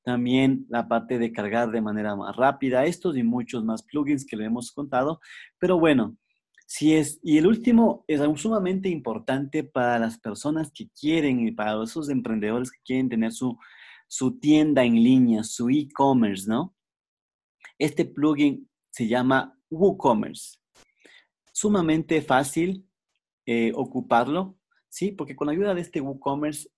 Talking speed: 145 wpm